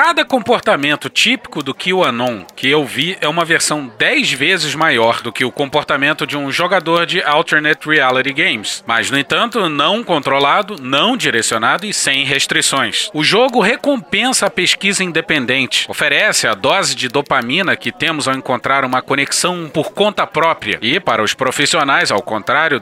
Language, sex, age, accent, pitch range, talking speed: Portuguese, male, 40-59, Brazilian, 140-185 Hz, 160 wpm